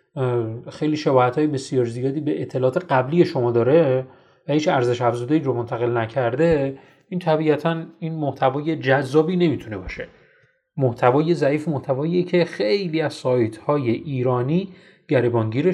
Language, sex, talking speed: Persian, male, 125 wpm